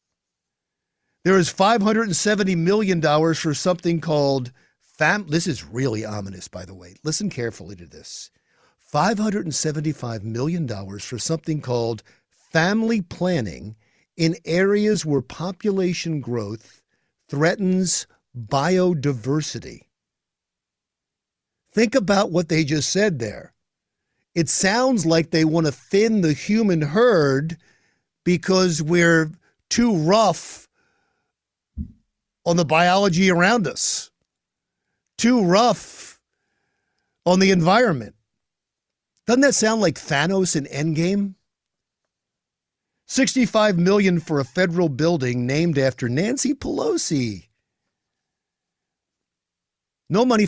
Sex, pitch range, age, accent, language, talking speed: male, 135-195 Hz, 50-69, American, English, 100 wpm